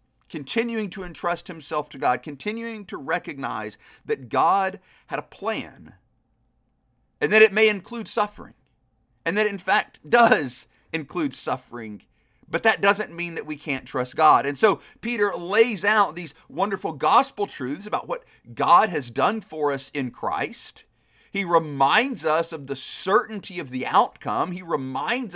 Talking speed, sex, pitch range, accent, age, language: 155 wpm, male, 140-215 Hz, American, 40-59, English